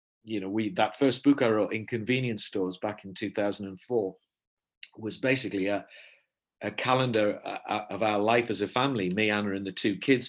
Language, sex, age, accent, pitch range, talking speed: English, male, 50-69, British, 105-130 Hz, 180 wpm